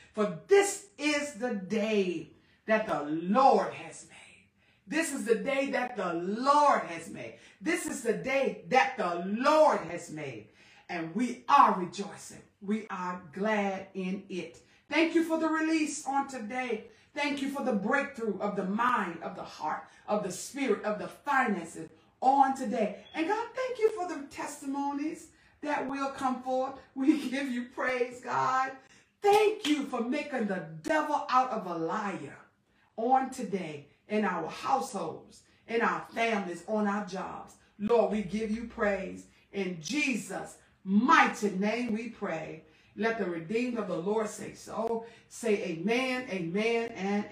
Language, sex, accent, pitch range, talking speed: English, female, American, 195-270 Hz, 155 wpm